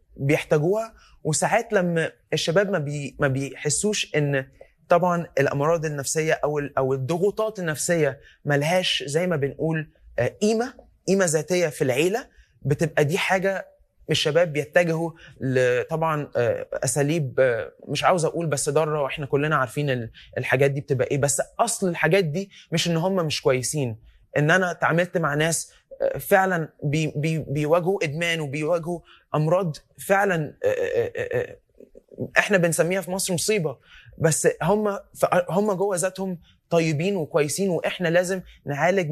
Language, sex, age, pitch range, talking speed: Arabic, male, 20-39, 150-185 Hz, 115 wpm